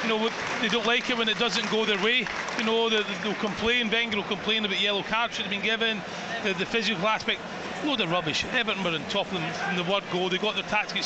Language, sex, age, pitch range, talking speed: English, male, 30-49, 180-220 Hz, 255 wpm